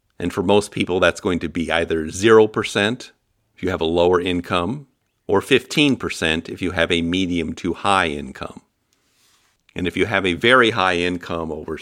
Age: 50-69